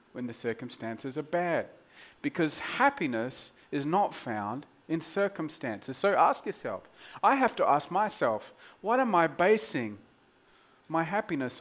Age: 40-59